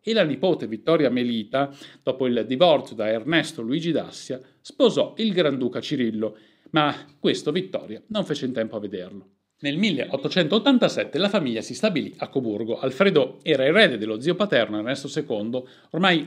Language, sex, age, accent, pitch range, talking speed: Italian, male, 50-69, native, 120-185 Hz, 155 wpm